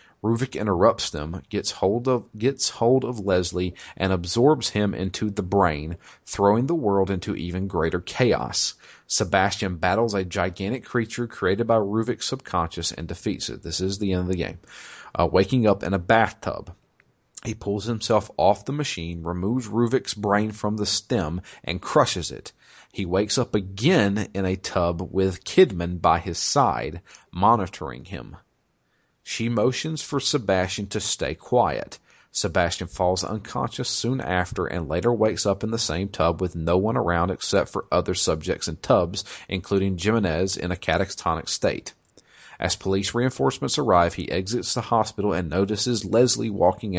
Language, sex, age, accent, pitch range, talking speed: English, male, 40-59, American, 90-110 Hz, 160 wpm